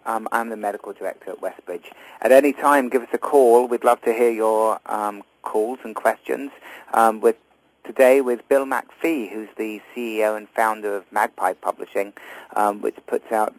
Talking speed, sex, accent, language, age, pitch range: 180 wpm, male, British, English, 30-49, 100-115 Hz